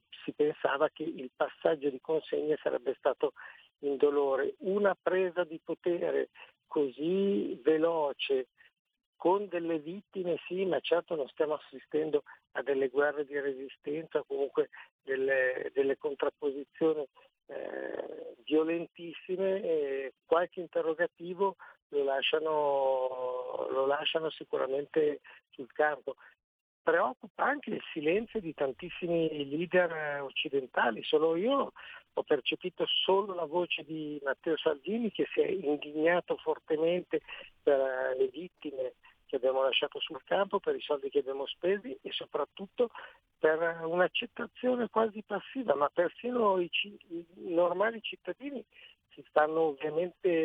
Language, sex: Italian, male